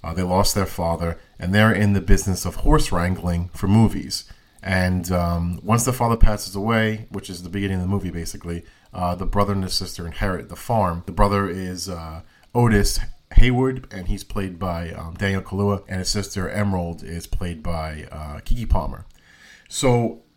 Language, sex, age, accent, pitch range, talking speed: English, male, 40-59, American, 90-110 Hz, 185 wpm